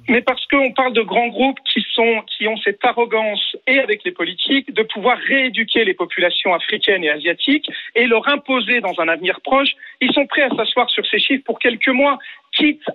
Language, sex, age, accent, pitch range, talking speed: French, male, 40-59, French, 220-275 Hz, 205 wpm